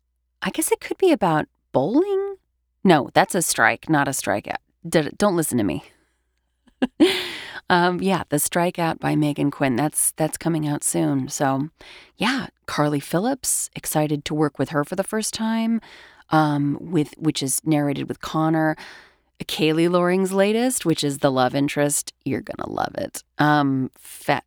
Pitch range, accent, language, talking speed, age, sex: 145-185 Hz, American, English, 155 wpm, 30-49, female